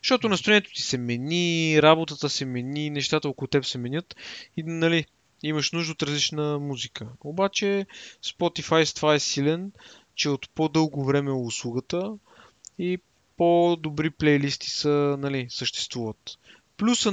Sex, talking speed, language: male, 135 wpm, Bulgarian